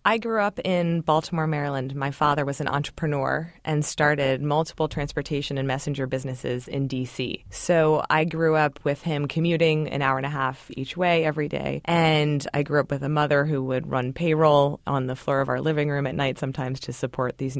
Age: 20-39